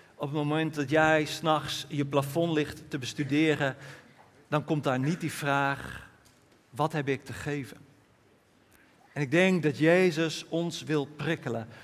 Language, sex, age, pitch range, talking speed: Dutch, male, 50-69, 140-170 Hz, 150 wpm